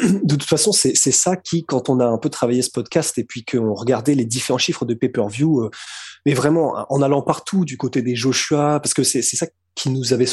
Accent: French